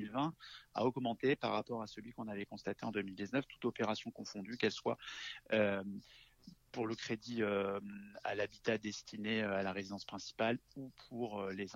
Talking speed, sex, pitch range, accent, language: 150 wpm, male, 100-120 Hz, French, French